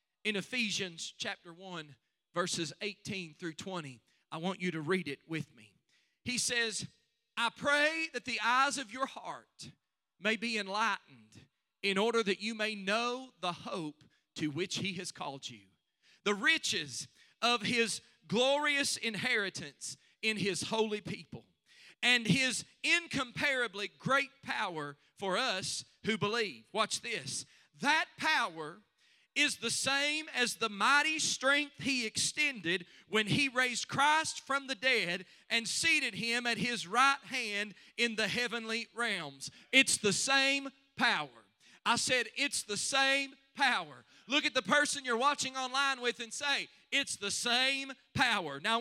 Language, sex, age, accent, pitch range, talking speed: English, male, 40-59, American, 185-270 Hz, 145 wpm